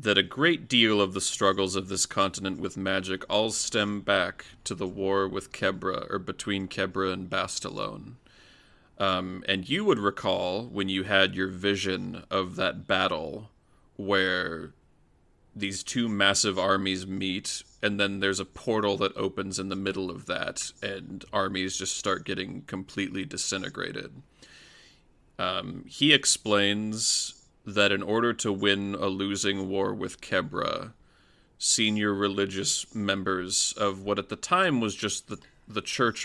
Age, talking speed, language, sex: 30-49, 145 wpm, English, male